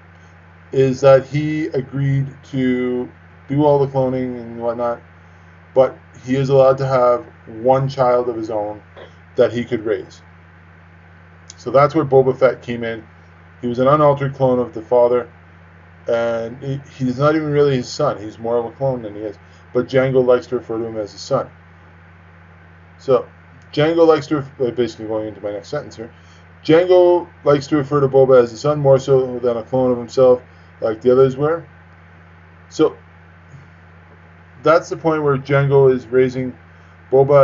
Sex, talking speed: male, 170 wpm